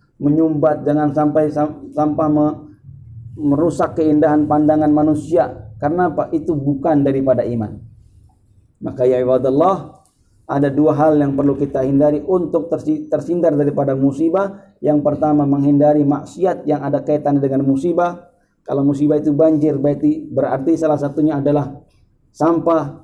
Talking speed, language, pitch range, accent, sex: 120 wpm, Indonesian, 135-165 Hz, native, male